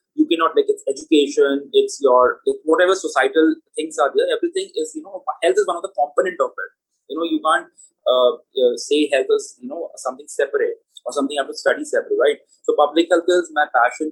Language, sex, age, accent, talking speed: English, male, 20-39, Indian, 215 wpm